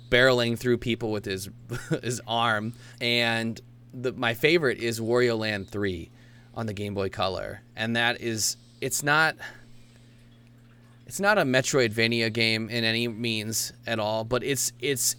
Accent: American